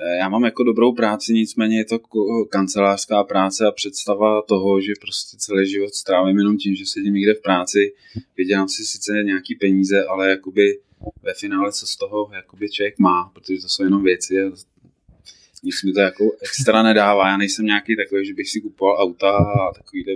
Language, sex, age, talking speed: Czech, male, 20-39, 190 wpm